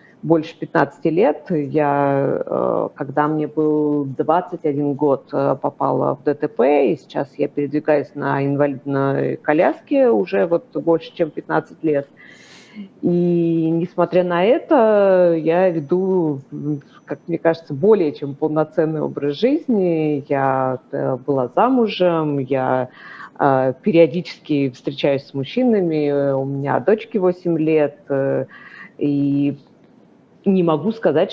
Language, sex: Russian, female